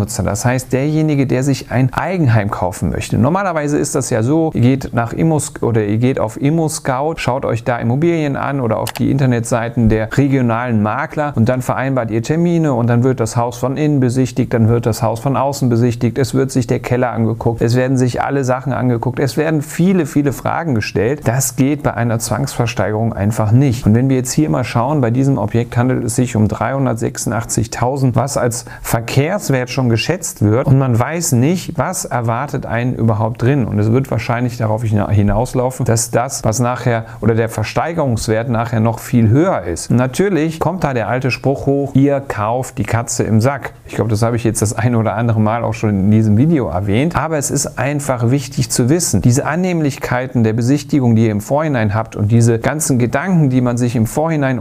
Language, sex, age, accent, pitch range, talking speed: German, male, 40-59, German, 115-140 Hz, 200 wpm